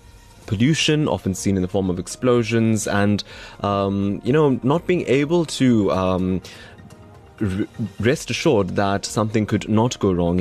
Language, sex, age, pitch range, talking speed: English, male, 20-39, 90-105 Hz, 145 wpm